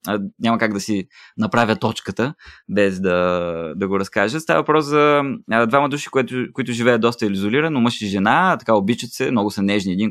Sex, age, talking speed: male, 20-39, 185 wpm